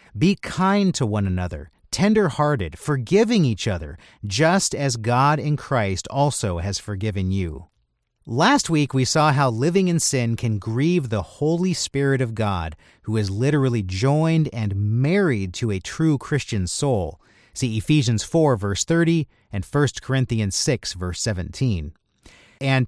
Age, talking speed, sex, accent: 40-59, 150 wpm, male, American